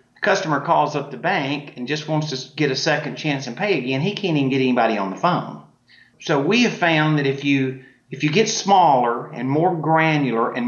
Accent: American